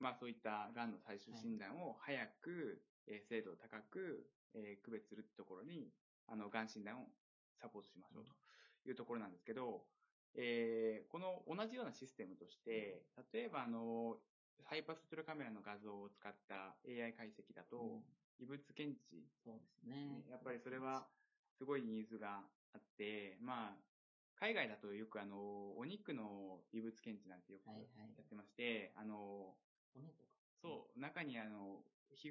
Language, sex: Japanese, male